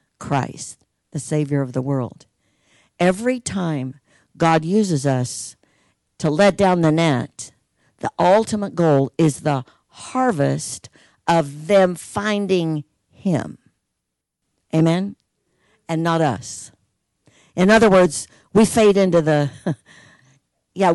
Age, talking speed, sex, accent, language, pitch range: 50-69, 110 wpm, female, American, English, 150-195 Hz